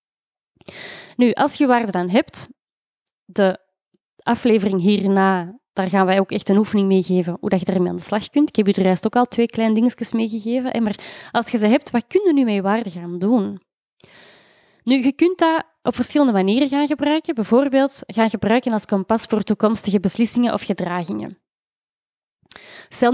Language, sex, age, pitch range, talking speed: Dutch, female, 20-39, 195-245 Hz, 180 wpm